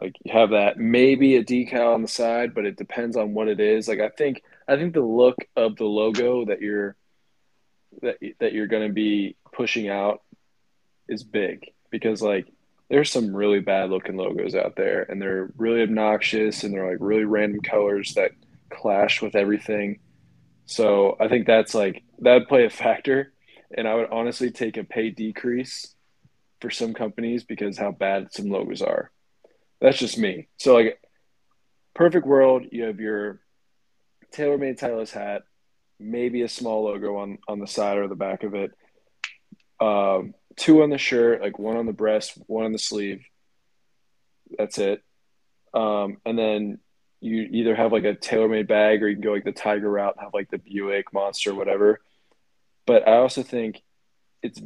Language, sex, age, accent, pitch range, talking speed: English, male, 20-39, American, 105-120 Hz, 175 wpm